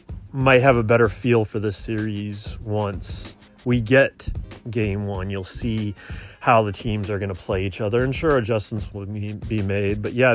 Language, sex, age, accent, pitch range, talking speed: English, male, 30-49, American, 105-125 Hz, 185 wpm